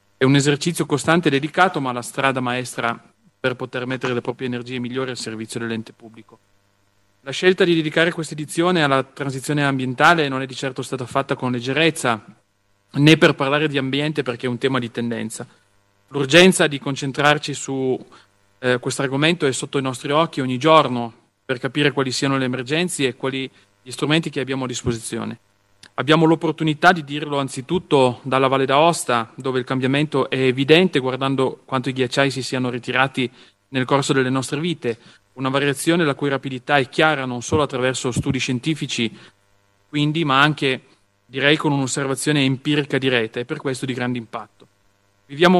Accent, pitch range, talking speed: native, 125-150 Hz, 170 wpm